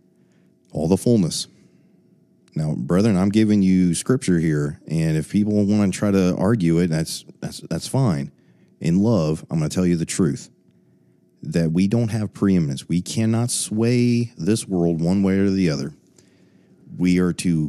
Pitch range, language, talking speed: 80-100 Hz, English, 170 wpm